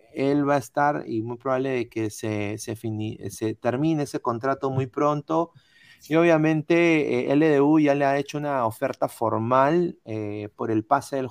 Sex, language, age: male, Spanish, 30-49